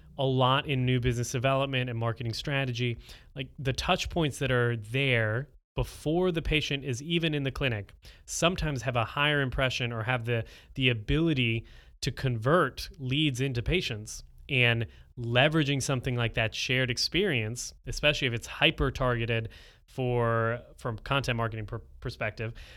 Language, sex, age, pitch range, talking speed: English, male, 20-39, 120-140 Hz, 150 wpm